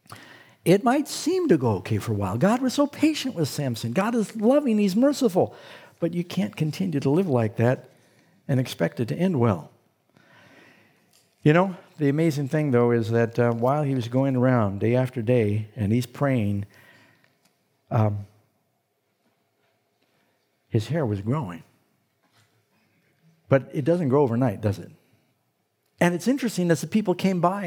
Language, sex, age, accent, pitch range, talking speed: English, male, 60-79, American, 120-180 Hz, 160 wpm